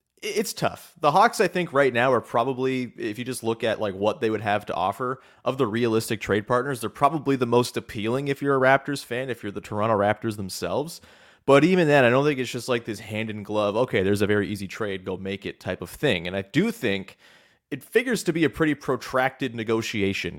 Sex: male